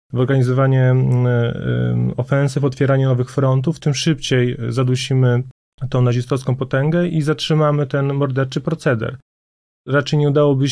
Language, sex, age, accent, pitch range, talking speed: Polish, male, 30-49, native, 120-135 Hz, 110 wpm